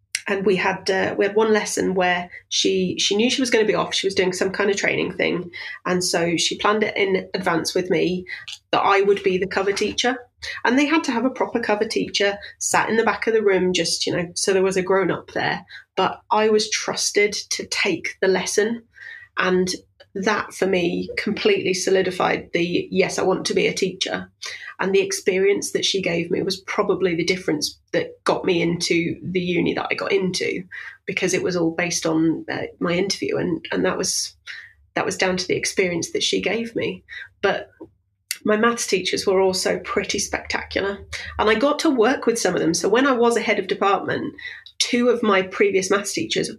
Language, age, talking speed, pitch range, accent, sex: English, 30-49, 215 wpm, 185-235 Hz, British, female